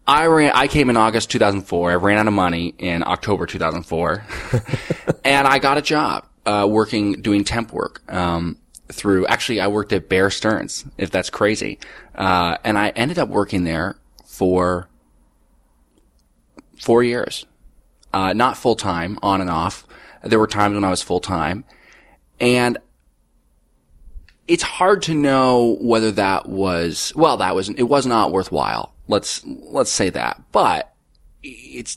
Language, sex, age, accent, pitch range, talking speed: English, male, 20-39, American, 90-120 Hz, 155 wpm